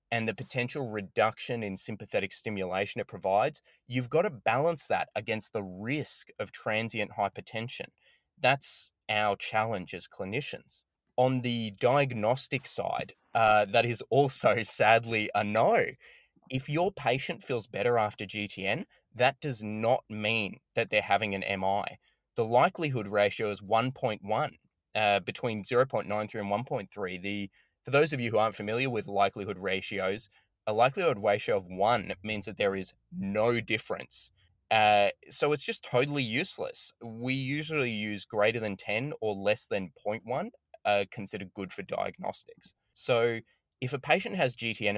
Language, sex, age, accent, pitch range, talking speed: English, male, 20-39, Australian, 100-125 Hz, 145 wpm